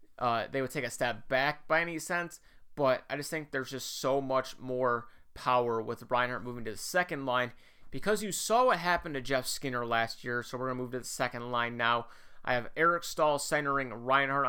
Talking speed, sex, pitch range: 220 wpm, male, 125-145 Hz